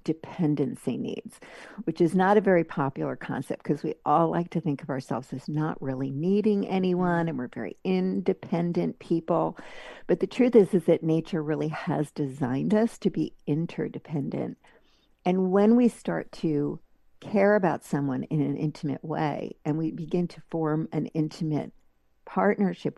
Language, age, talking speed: English, 60-79, 160 wpm